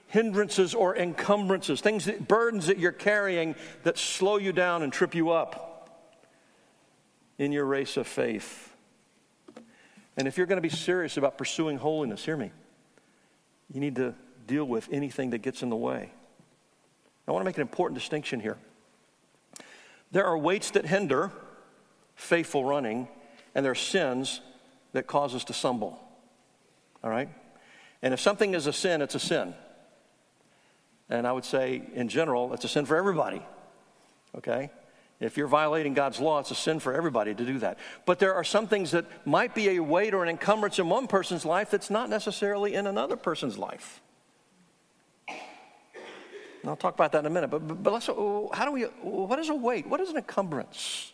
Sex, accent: male, American